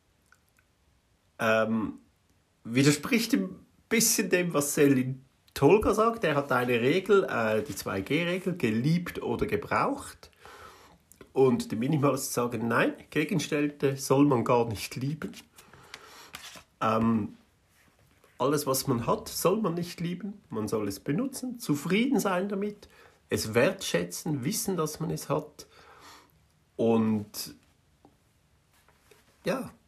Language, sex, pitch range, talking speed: German, male, 130-215 Hz, 110 wpm